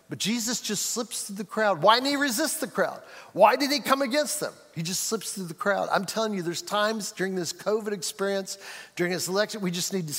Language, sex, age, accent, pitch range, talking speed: English, male, 50-69, American, 185-245 Hz, 240 wpm